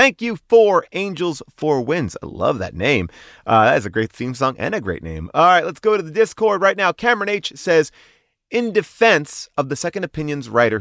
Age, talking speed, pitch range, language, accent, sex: 30-49, 220 wpm, 120-185 Hz, English, American, male